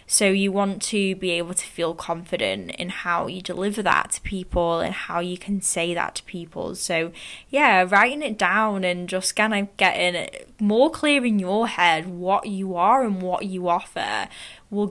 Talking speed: 195 wpm